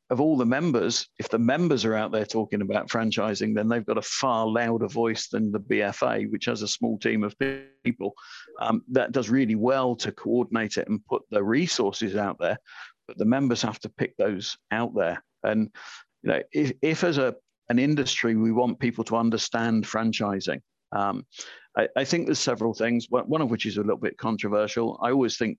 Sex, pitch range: male, 105-120 Hz